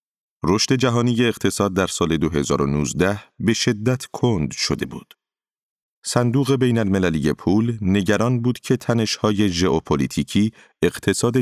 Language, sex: Persian, male